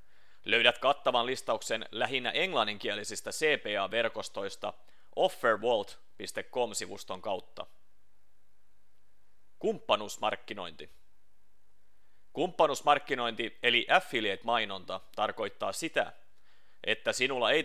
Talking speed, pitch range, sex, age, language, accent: 60 wpm, 100-125 Hz, male, 30-49, Finnish, native